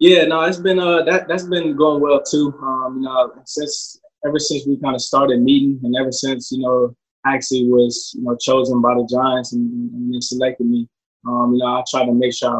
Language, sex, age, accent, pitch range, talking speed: English, male, 20-39, American, 120-130 Hz, 230 wpm